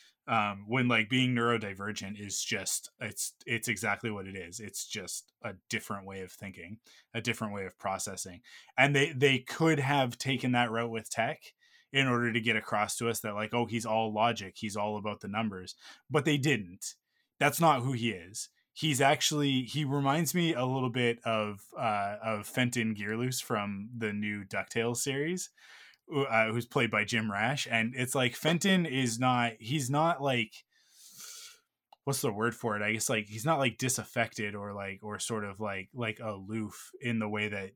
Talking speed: 190 wpm